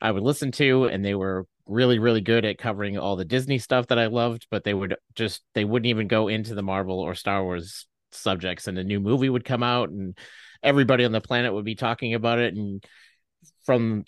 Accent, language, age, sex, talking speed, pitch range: American, English, 30-49, male, 225 wpm, 100-120 Hz